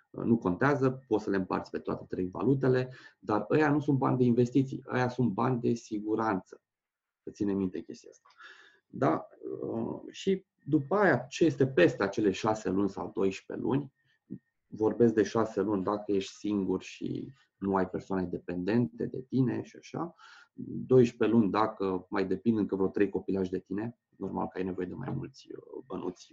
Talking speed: 170 wpm